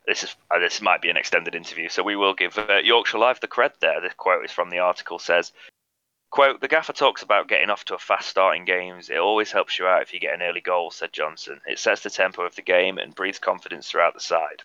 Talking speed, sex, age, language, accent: 260 wpm, male, 20-39, English, British